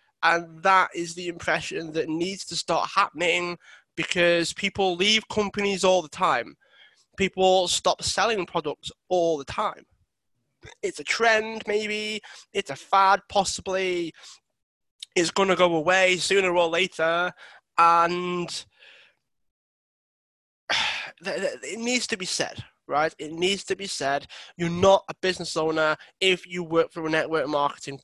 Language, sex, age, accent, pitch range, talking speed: English, male, 20-39, British, 155-190 Hz, 135 wpm